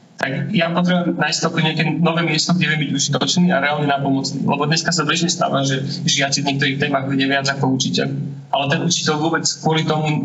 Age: 30-49